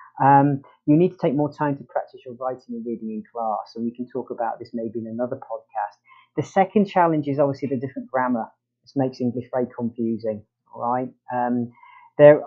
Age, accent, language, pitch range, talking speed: 30-49, British, English, 120-145 Hz, 195 wpm